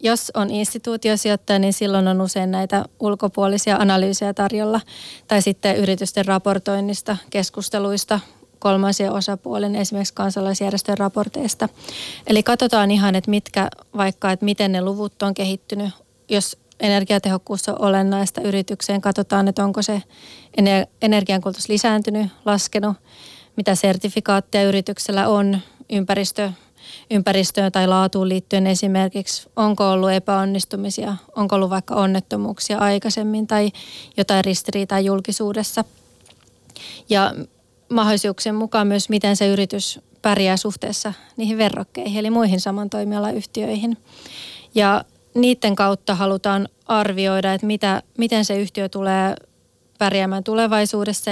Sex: female